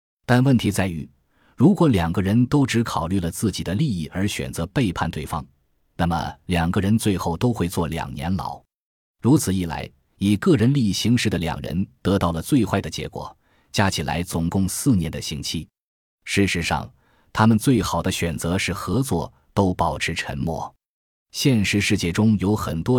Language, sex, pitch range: Chinese, male, 85-110 Hz